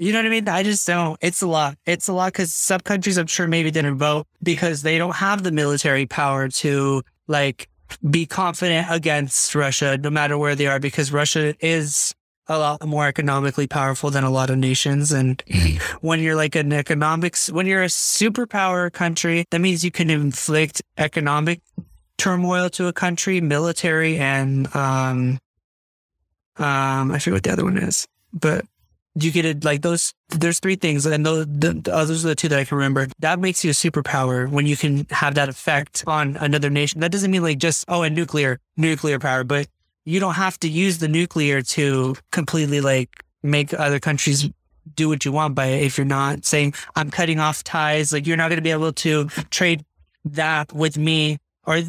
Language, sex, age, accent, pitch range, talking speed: English, male, 20-39, American, 140-170 Hz, 200 wpm